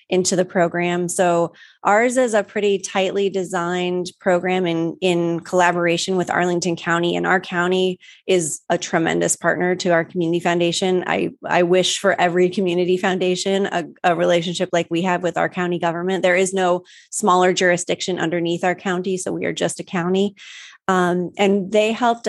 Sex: female